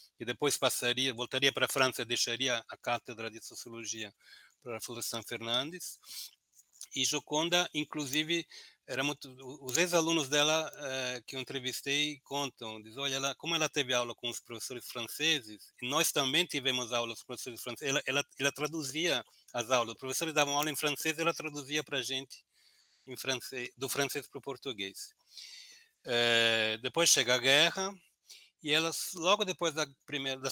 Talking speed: 165 wpm